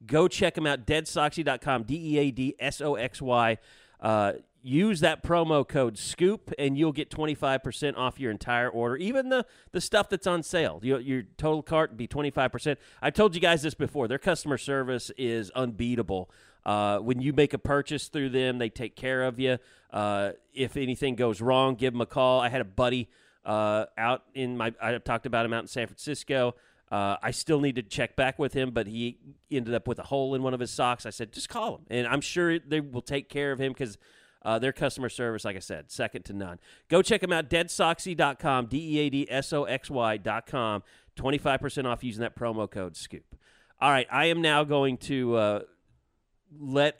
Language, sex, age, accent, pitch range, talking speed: English, male, 30-49, American, 120-150 Hz, 195 wpm